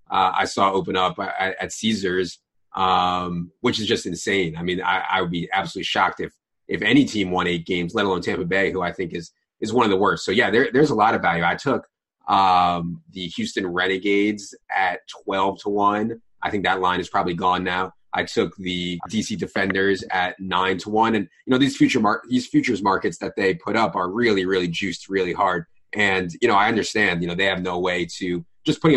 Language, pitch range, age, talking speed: English, 90-100 Hz, 30-49, 225 wpm